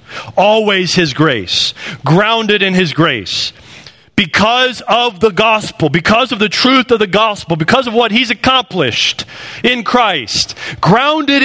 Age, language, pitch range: 40-59, English, 120-170 Hz